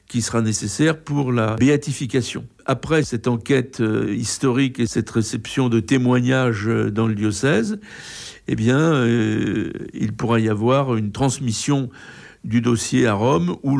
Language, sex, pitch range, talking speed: French, male, 110-130 Hz, 140 wpm